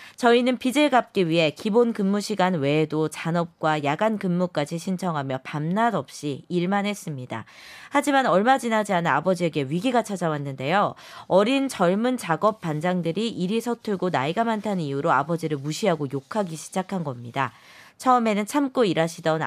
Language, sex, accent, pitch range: Korean, female, native, 160-230 Hz